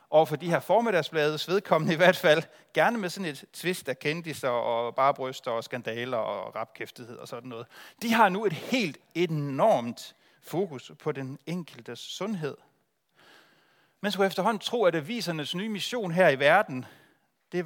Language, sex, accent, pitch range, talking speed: Danish, male, native, 130-175 Hz, 165 wpm